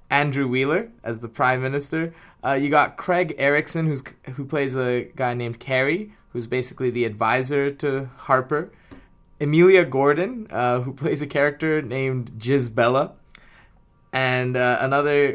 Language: English